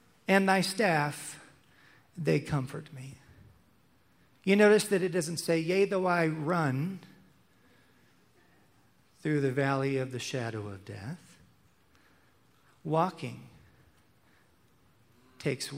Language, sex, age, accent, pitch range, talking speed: English, male, 40-59, American, 125-160 Hz, 100 wpm